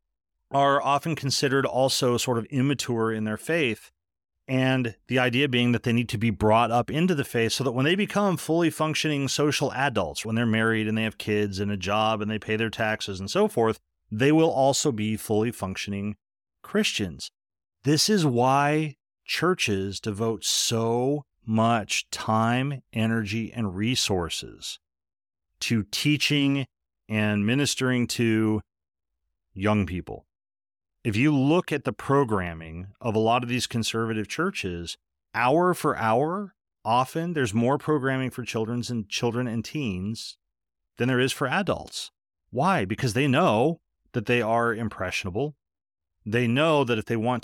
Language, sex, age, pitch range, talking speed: English, male, 40-59, 105-135 Hz, 150 wpm